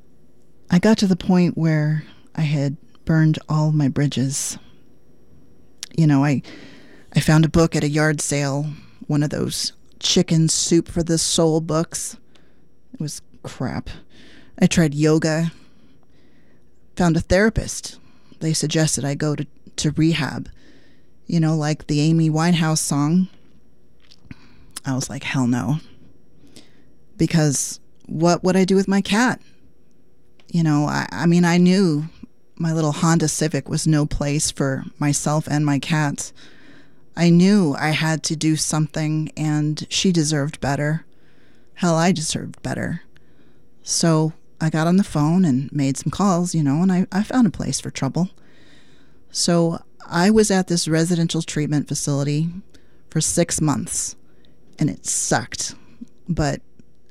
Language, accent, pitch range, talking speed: English, American, 150-170 Hz, 145 wpm